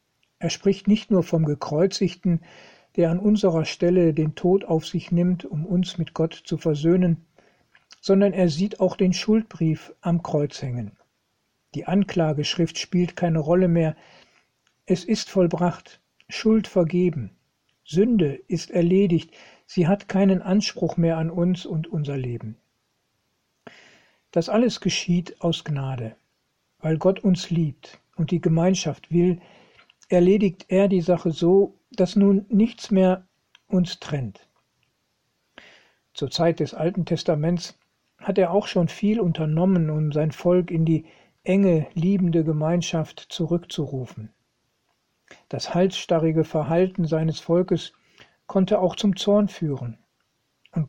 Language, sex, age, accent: German, male, 60-79, German